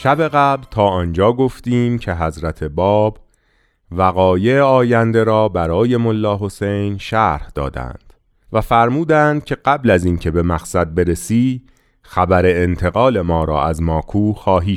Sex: male